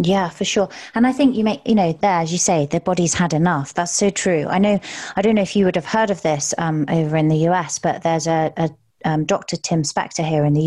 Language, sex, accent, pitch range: English, female, British, 155-185 Hz